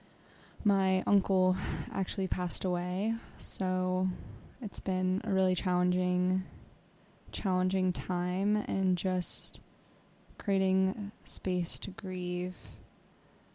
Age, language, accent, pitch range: 20-39, English, American, 180-195 Hz